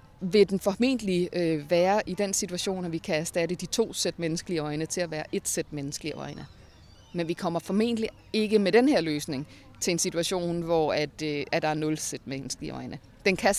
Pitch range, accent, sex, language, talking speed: 165-200 Hz, native, female, Danish, 210 wpm